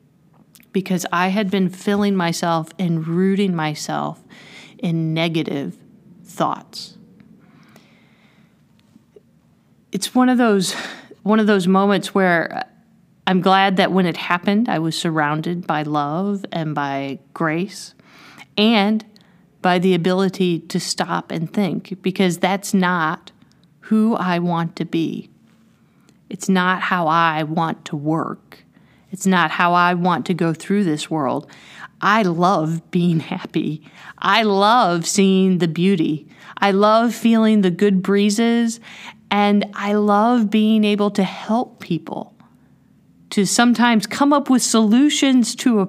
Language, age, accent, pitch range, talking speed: English, 30-49, American, 175-210 Hz, 130 wpm